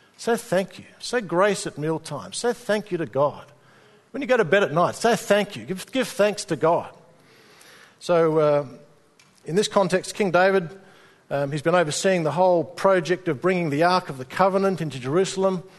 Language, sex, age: English, male, 50-69